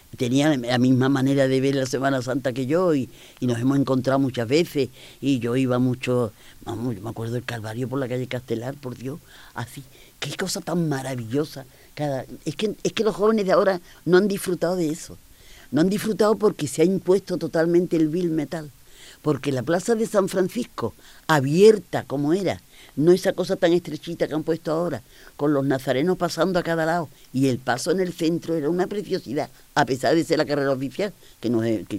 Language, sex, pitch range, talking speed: Spanish, female, 130-180 Hz, 205 wpm